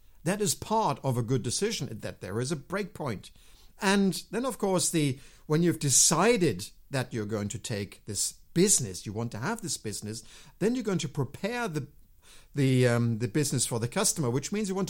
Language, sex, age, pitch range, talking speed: English, male, 50-69, 120-175 Hz, 205 wpm